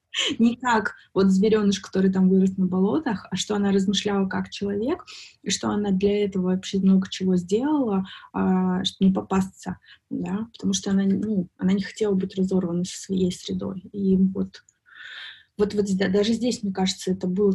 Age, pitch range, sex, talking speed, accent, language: 20-39, 185-205 Hz, female, 170 wpm, native, Russian